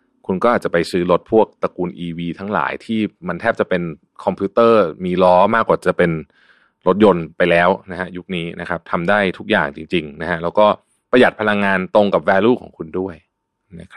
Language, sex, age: Thai, male, 20-39